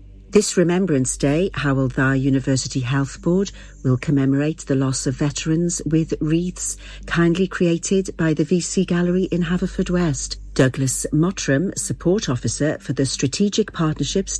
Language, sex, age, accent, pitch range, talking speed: English, female, 50-69, British, 130-175 Hz, 140 wpm